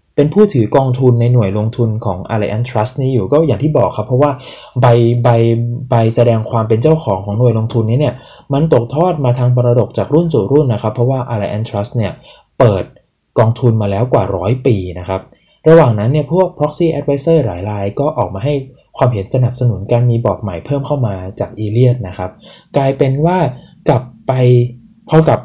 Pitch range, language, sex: 105-135 Hz, Thai, male